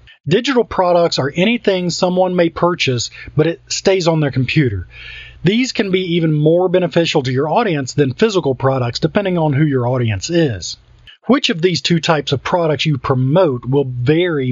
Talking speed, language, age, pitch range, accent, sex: 175 wpm, English, 40-59, 130-175 Hz, American, male